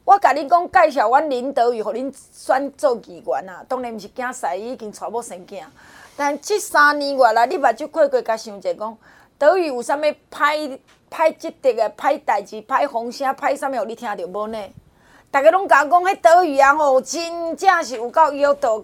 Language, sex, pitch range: Chinese, female, 250-335 Hz